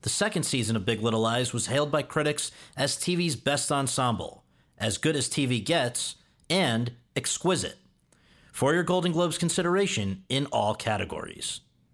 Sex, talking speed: male, 150 wpm